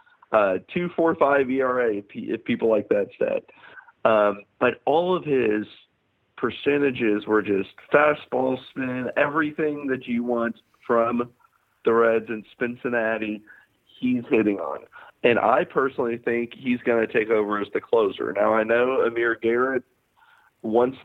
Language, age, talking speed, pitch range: English, 40-59, 135 wpm, 110-145 Hz